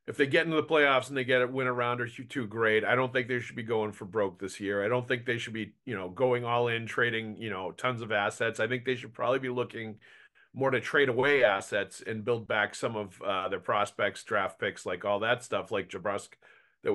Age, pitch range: 40-59, 115-150 Hz